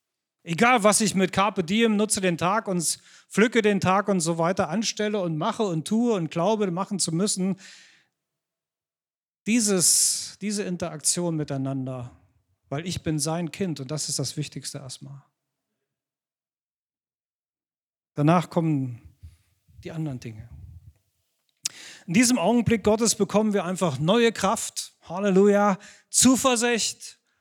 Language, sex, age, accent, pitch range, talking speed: German, male, 40-59, German, 155-220 Hz, 125 wpm